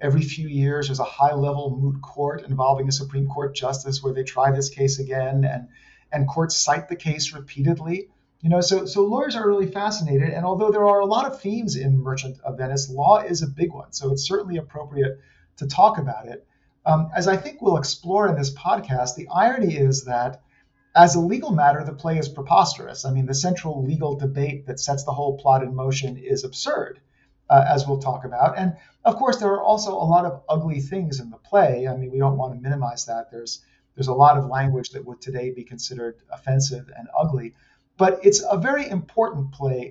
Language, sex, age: English, male, 50-69